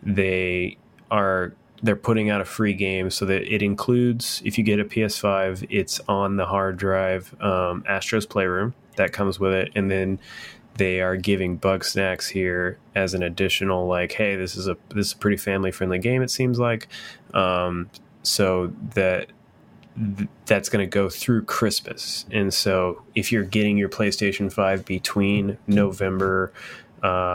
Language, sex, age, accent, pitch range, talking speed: English, male, 20-39, American, 90-100 Hz, 165 wpm